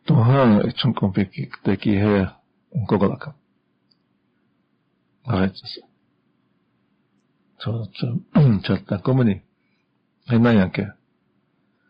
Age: 50-69